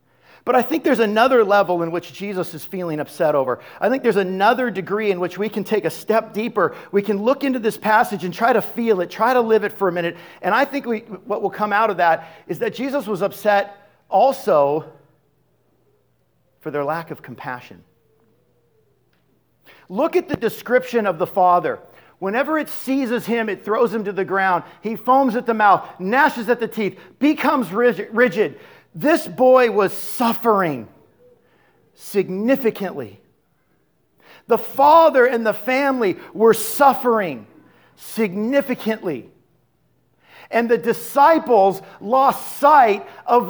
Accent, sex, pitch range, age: American, male, 195-250 Hz, 50-69